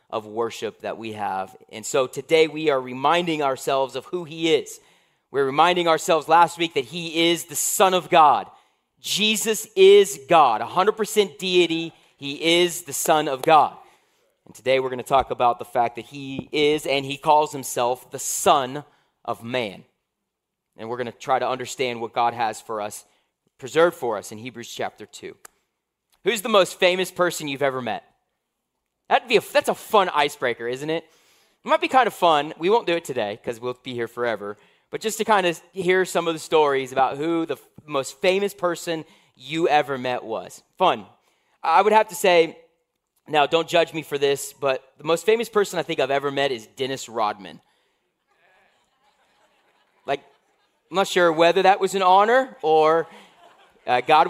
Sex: male